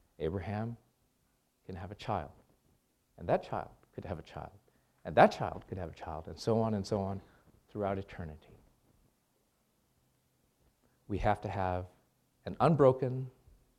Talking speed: 145 wpm